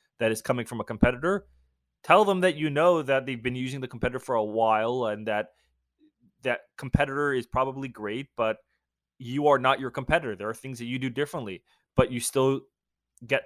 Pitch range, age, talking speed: 115-145 Hz, 20-39, 195 wpm